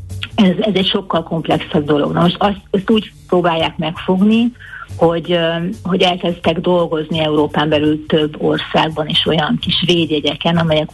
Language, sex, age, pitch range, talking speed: Hungarian, female, 50-69, 150-180 Hz, 135 wpm